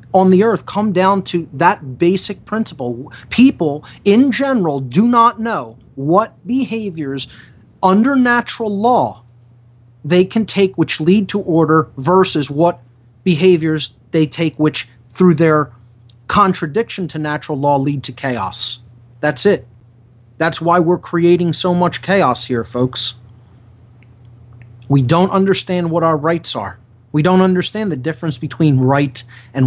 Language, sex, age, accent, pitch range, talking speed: English, male, 30-49, American, 120-175 Hz, 140 wpm